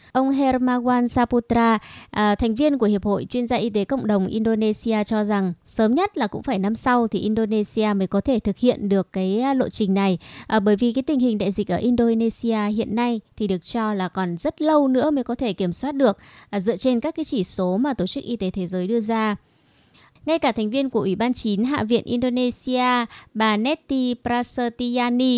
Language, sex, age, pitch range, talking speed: Vietnamese, female, 20-39, 210-265 Hz, 215 wpm